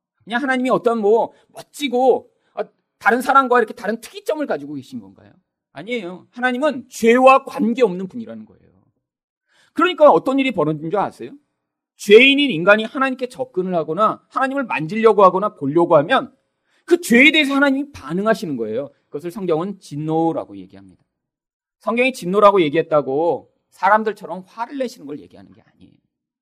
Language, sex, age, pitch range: Korean, male, 40-59, 180-270 Hz